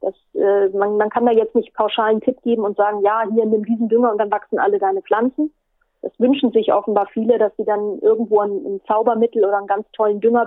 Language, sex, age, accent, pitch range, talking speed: German, female, 30-49, German, 215-255 Hz, 235 wpm